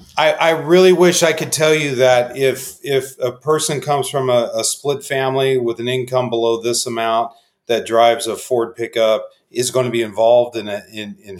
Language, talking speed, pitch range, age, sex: English, 205 wpm, 120-145 Hz, 40-59, male